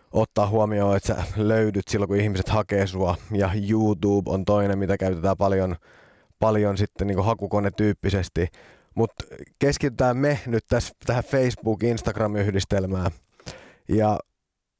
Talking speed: 125 wpm